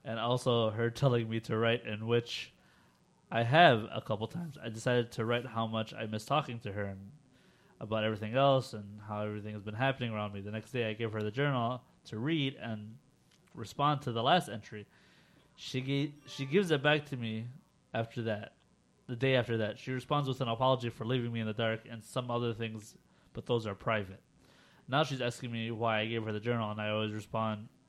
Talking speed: 215 wpm